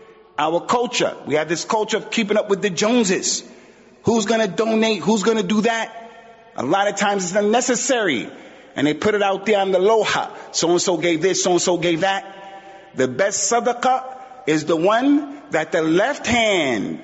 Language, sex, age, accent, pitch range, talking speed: English, male, 40-59, American, 180-220 Hz, 190 wpm